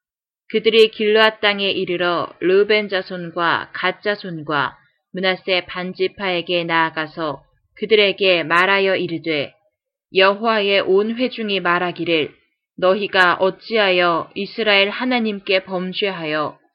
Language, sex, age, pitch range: Korean, female, 20-39, 175-205 Hz